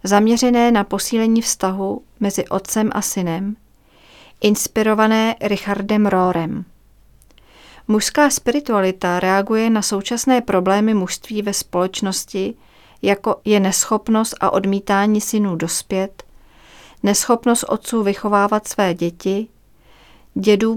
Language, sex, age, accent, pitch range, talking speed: Czech, female, 40-59, native, 190-220 Hz, 95 wpm